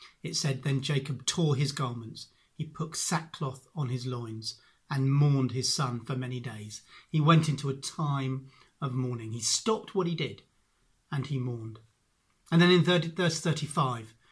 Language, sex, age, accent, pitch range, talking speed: English, male, 40-59, British, 130-160 Hz, 170 wpm